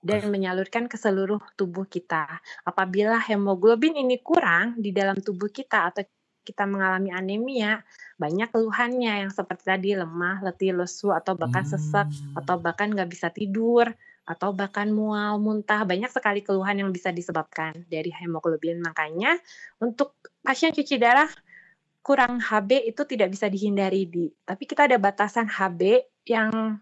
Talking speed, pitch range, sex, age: 145 wpm, 190-235 Hz, female, 20-39